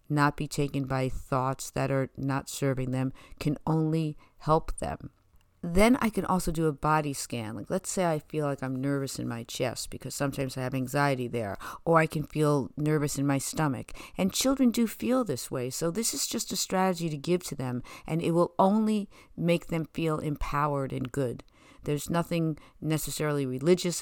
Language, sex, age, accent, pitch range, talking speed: English, female, 50-69, American, 130-160 Hz, 190 wpm